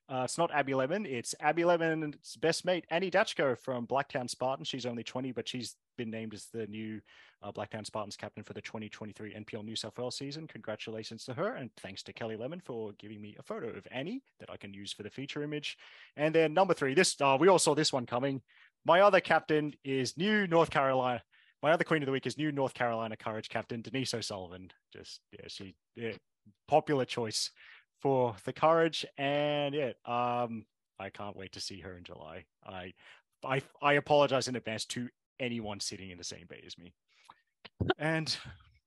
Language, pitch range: English, 110-150 Hz